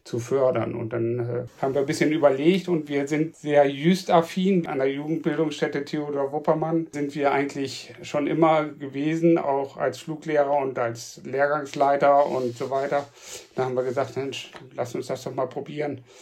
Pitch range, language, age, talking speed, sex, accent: 130-150 Hz, German, 60-79, 170 wpm, male, German